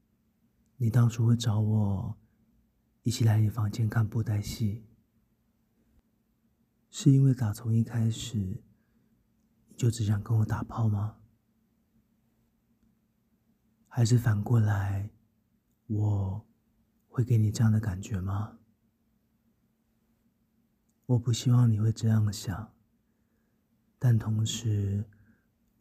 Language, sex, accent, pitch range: Chinese, male, native, 105-115 Hz